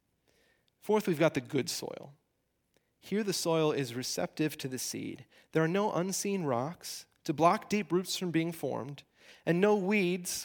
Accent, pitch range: American, 145-190 Hz